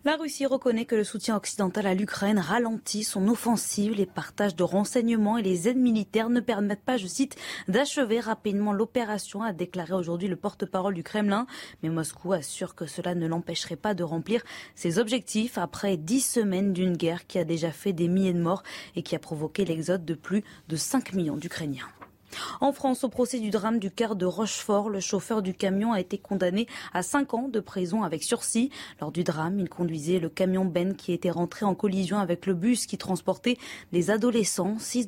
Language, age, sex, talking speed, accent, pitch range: French, 20-39, female, 200 wpm, French, 175-230 Hz